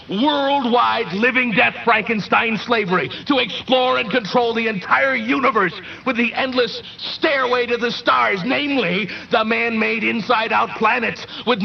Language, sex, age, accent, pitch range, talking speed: English, male, 50-69, American, 200-250 Hz, 130 wpm